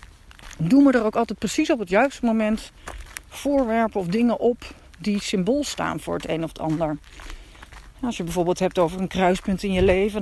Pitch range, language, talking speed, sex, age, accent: 170-235 Hz, Dutch, 195 wpm, female, 40-59, Dutch